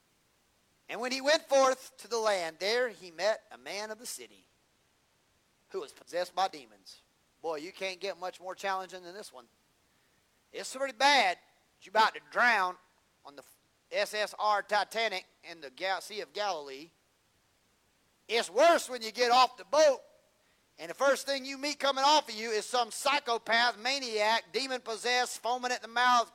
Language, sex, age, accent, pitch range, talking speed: English, male, 40-59, American, 195-280 Hz, 165 wpm